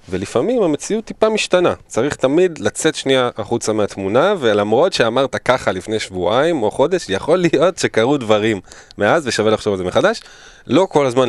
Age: 20-39